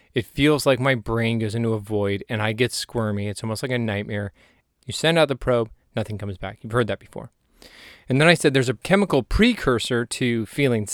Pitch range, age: 115-135 Hz, 20-39